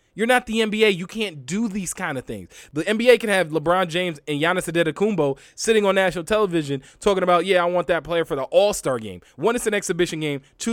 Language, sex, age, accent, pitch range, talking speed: English, male, 20-39, American, 135-190 Hz, 230 wpm